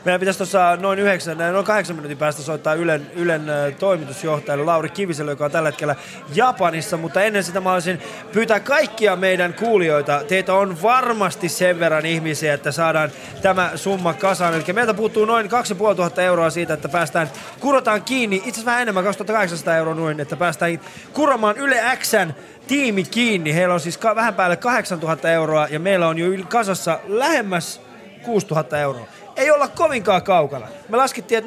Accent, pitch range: native, 160-215 Hz